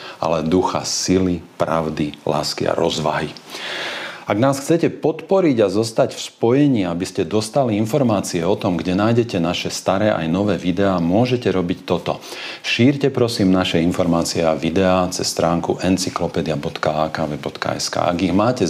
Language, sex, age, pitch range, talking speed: Slovak, male, 40-59, 85-115 Hz, 140 wpm